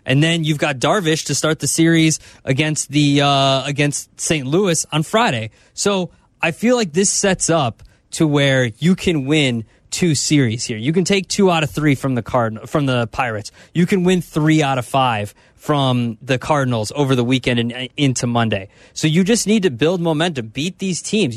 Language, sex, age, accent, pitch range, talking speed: English, male, 20-39, American, 135-185 Hz, 200 wpm